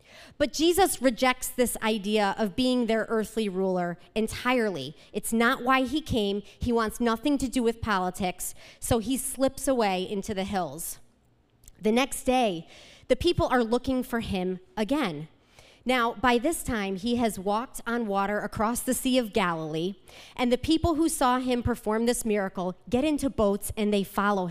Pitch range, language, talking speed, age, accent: 195-250 Hz, English, 170 wpm, 30-49, American